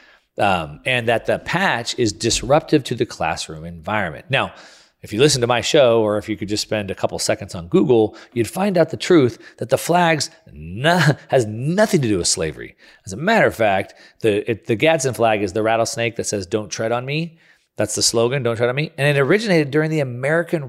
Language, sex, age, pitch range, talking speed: English, male, 40-59, 105-155 Hz, 215 wpm